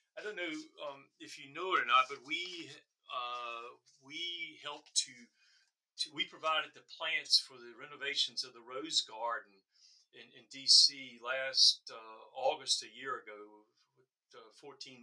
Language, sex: English, male